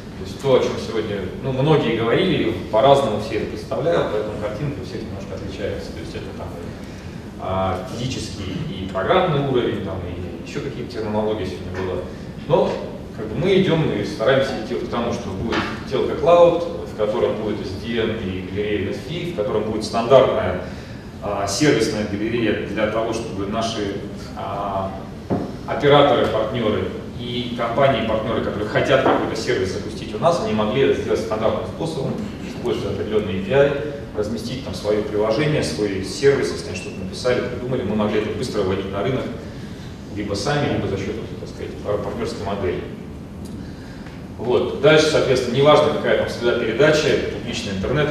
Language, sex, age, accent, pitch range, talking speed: Russian, male, 30-49, native, 100-125 Hz, 150 wpm